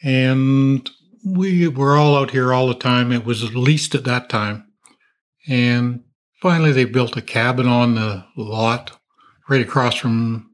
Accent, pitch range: American, 120-145 Hz